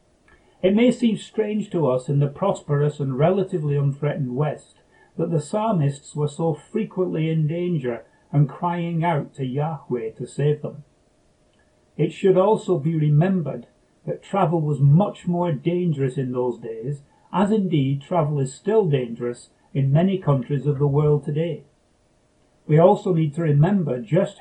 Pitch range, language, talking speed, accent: 140-180 Hz, English, 150 wpm, British